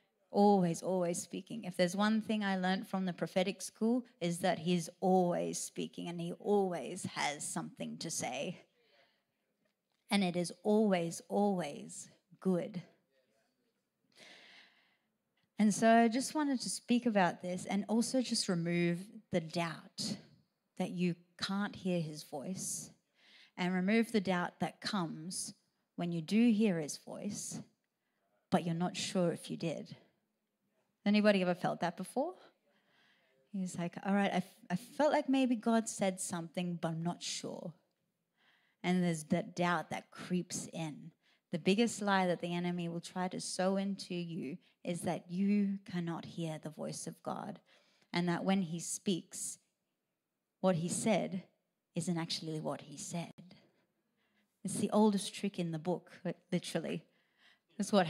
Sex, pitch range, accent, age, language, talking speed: female, 175-210 Hz, Australian, 30-49, English, 150 wpm